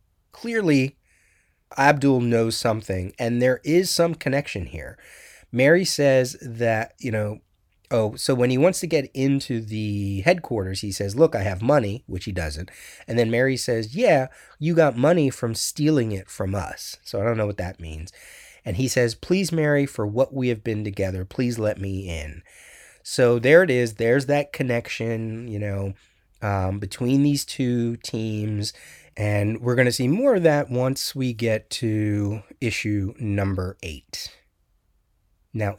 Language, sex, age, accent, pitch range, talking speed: English, male, 30-49, American, 100-130 Hz, 165 wpm